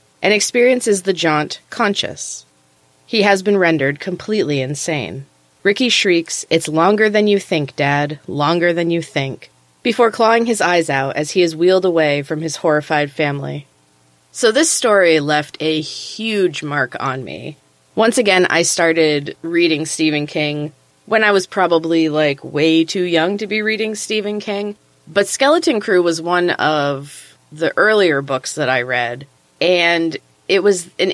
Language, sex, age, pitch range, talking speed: English, female, 30-49, 140-190 Hz, 160 wpm